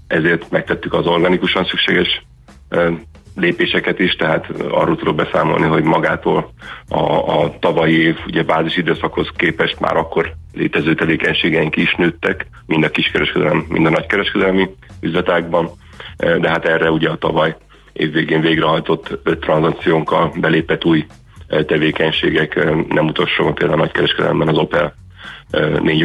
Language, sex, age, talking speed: Hungarian, male, 40-59, 130 wpm